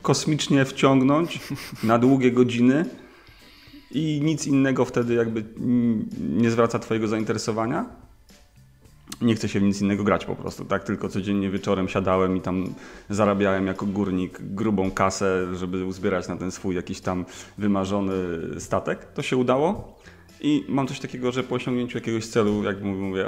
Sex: male